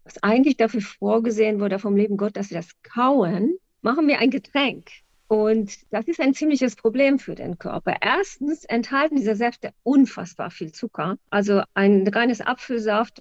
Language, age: German, 50-69